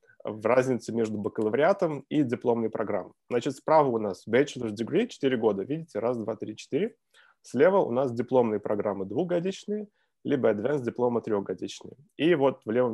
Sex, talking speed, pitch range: male, 160 wpm, 110-145 Hz